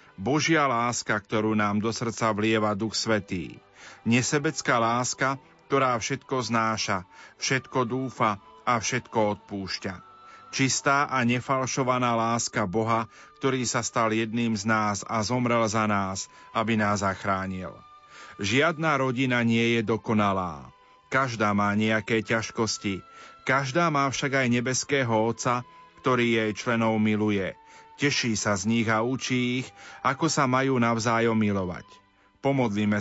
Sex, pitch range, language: male, 105-130 Hz, Slovak